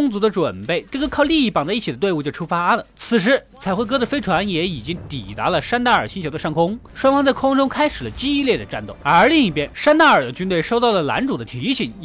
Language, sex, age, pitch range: Chinese, male, 20-39, 170-265 Hz